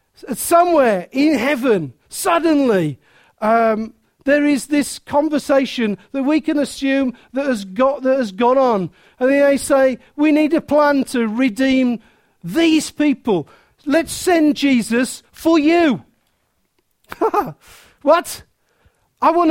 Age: 50-69